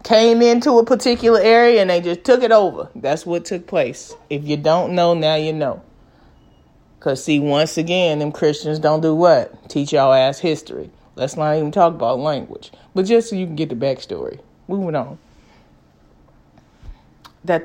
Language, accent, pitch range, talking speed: English, American, 145-190 Hz, 180 wpm